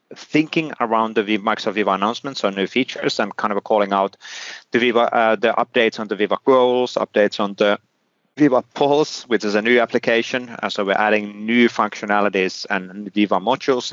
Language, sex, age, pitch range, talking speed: English, male, 30-49, 100-130 Hz, 190 wpm